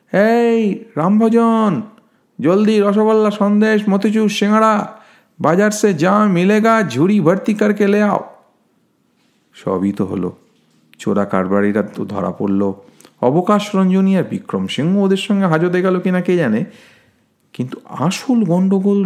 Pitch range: 155-215 Hz